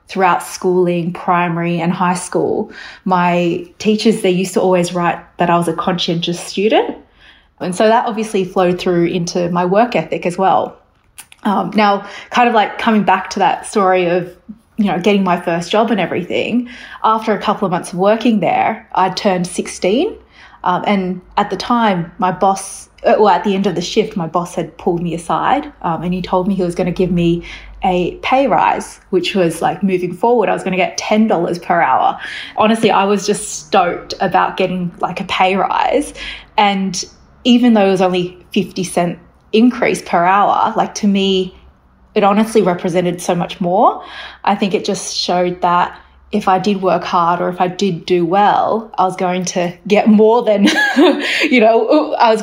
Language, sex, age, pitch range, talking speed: English, female, 20-39, 180-210 Hz, 190 wpm